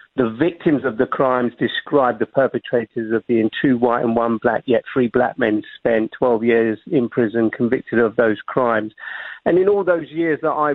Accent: British